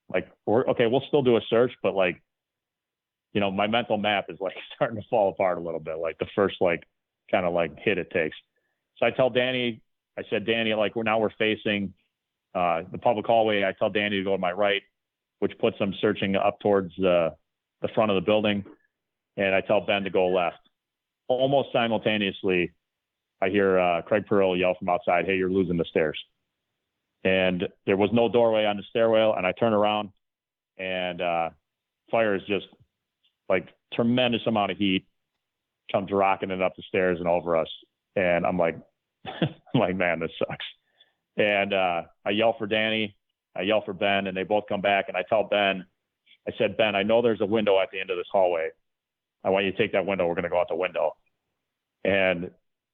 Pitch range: 95-110 Hz